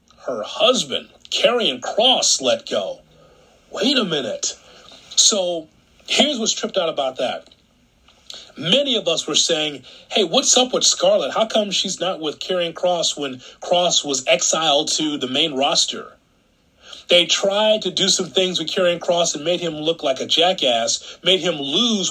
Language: English